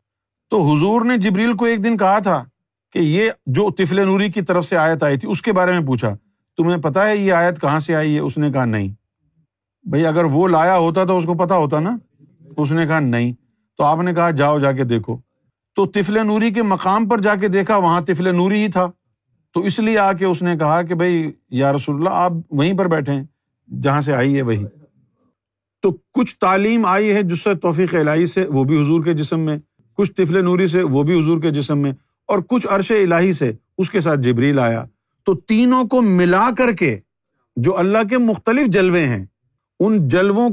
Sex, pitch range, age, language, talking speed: male, 145-195 Hz, 50-69, Urdu, 220 wpm